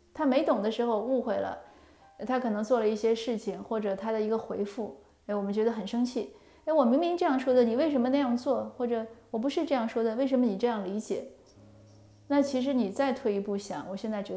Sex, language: female, Chinese